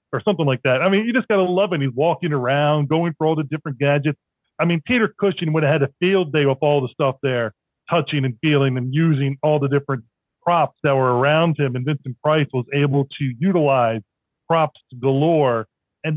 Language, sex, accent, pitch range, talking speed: English, male, American, 135-180 Hz, 220 wpm